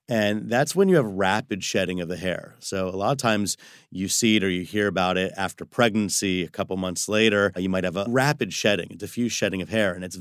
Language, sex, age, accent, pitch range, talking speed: English, male, 30-49, American, 95-110 Hz, 245 wpm